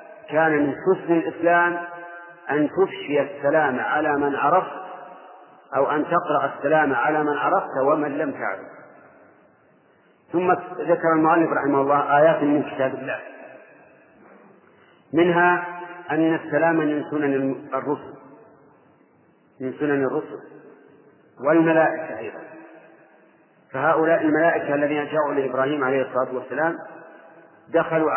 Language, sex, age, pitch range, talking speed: Arabic, male, 50-69, 145-165 Hz, 105 wpm